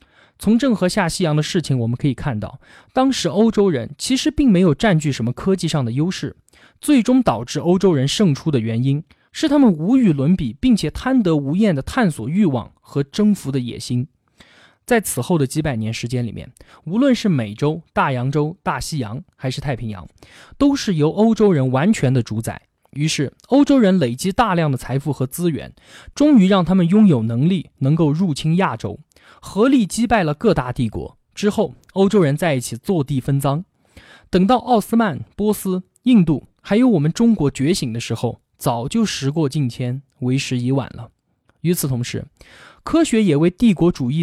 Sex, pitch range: male, 130-210 Hz